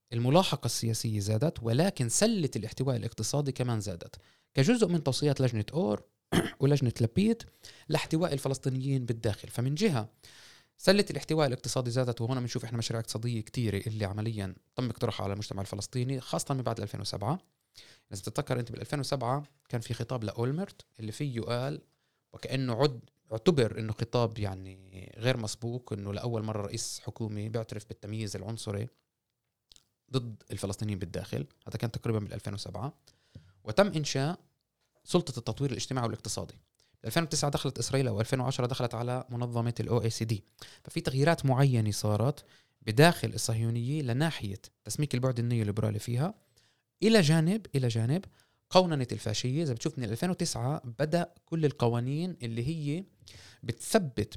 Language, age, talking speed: Arabic, 20-39, 130 wpm